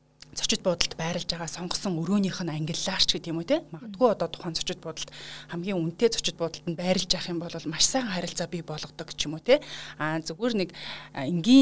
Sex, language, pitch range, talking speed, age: female, Russian, 160-190 Hz, 125 wpm, 30-49